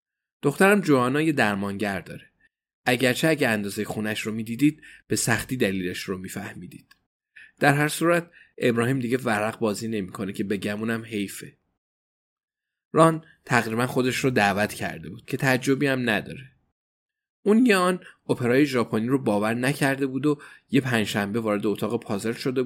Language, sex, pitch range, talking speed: Persian, male, 105-140 Hz, 145 wpm